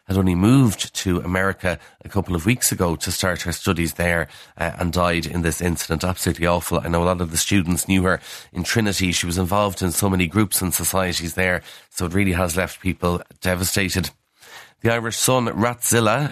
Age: 30-49